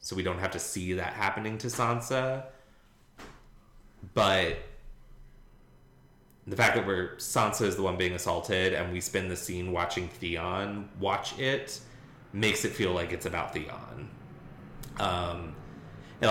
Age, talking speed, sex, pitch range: 30-49, 145 wpm, male, 90-105 Hz